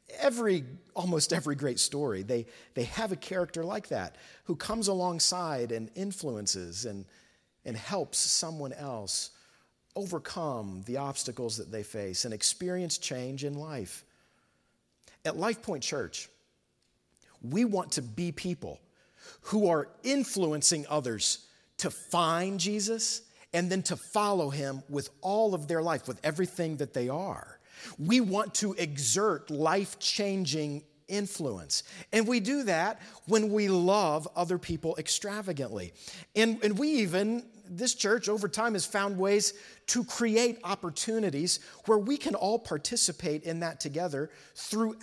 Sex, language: male, English